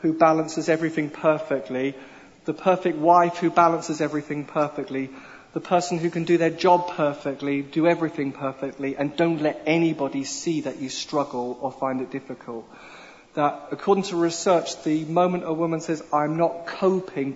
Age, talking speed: 40-59, 160 wpm